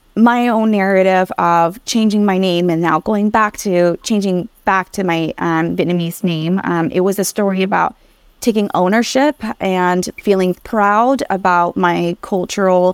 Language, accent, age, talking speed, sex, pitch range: English, American, 20-39, 155 wpm, female, 180-230 Hz